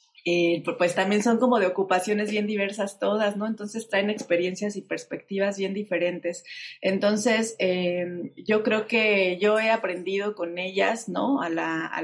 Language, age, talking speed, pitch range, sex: Spanish, 30-49, 160 wpm, 180-210 Hz, female